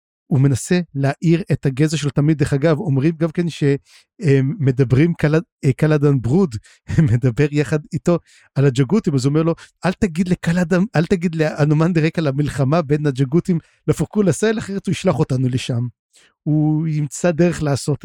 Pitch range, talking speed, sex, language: 135-170 Hz, 155 wpm, male, Hebrew